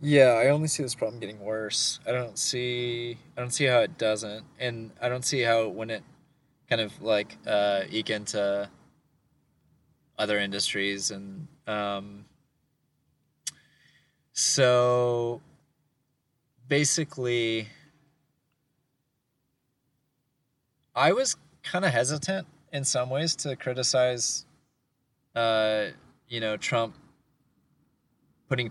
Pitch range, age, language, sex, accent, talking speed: 110-145 Hz, 20-39, English, male, American, 110 wpm